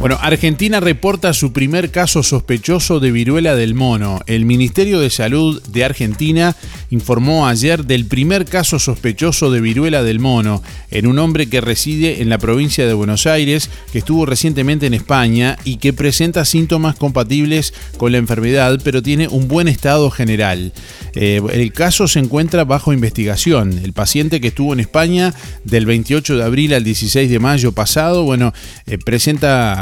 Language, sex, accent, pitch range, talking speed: Spanish, male, Argentinian, 115-150 Hz, 165 wpm